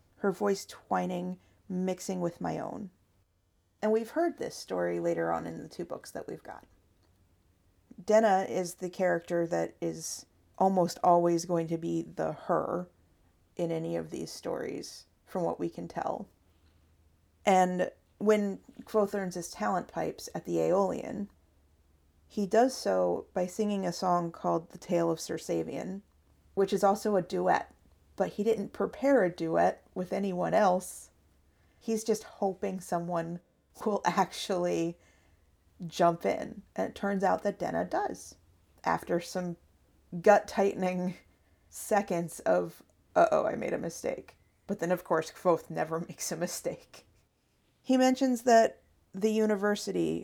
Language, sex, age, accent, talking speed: English, female, 40-59, American, 140 wpm